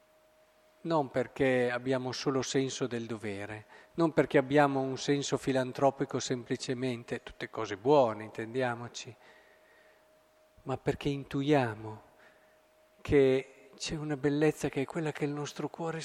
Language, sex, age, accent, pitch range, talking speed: Italian, male, 50-69, native, 130-170 Hz, 120 wpm